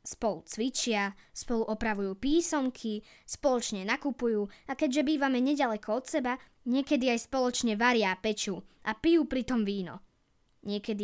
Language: Slovak